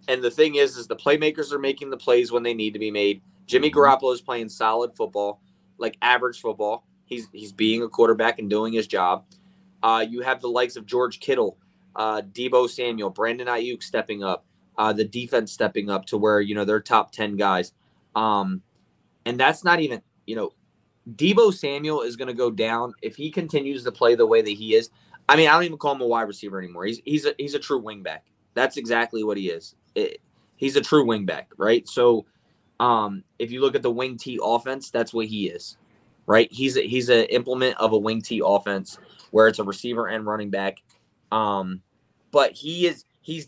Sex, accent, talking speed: male, American, 210 wpm